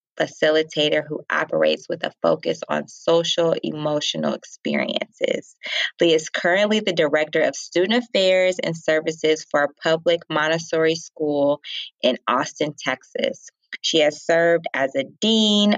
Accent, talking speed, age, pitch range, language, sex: American, 130 wpm, 20-39, 150-180 Hz, English, female